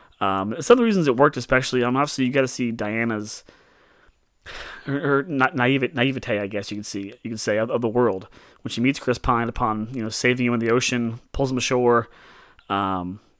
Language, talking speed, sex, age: English, 220 wpm, male, 30-49